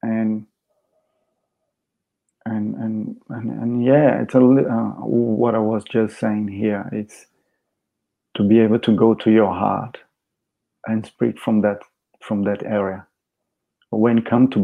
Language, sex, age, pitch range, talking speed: English, male, 40-59, 110-125 Hz, 150 wpm